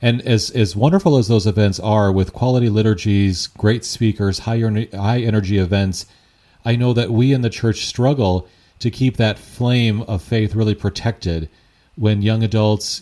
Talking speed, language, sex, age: 160 wpm, English, male, 40-59